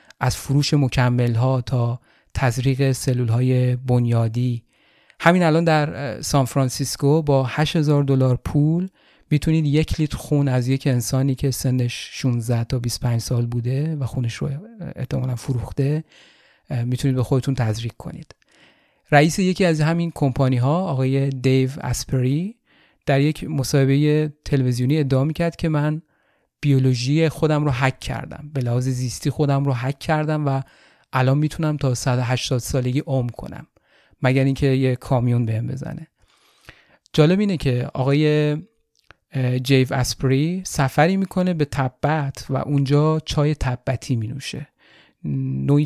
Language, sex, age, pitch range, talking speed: Persian, male, 30-49, 125-150 Hz, 130 wpm